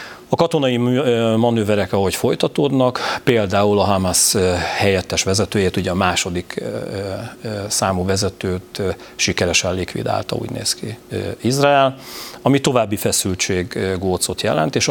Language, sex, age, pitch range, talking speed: Hungarian, male, 40-59, 95-110 Hz, 110 wpm